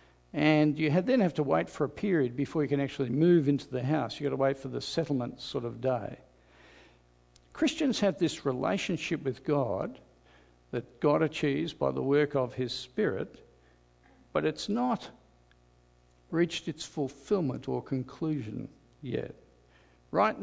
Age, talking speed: 60-79, 155 wpm